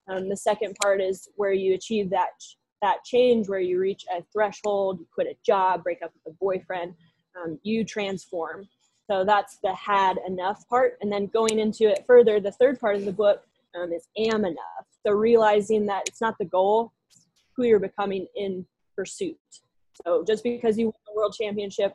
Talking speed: 195 wpm